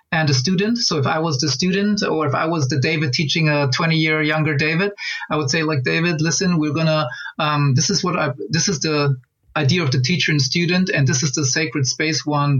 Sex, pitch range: male, 140-170 Hz